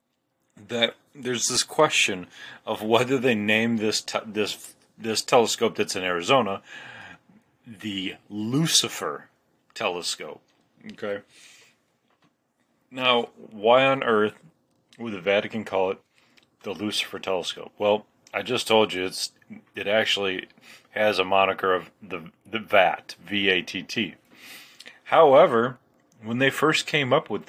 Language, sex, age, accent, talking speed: English, male, 30-49, American, 125 wpm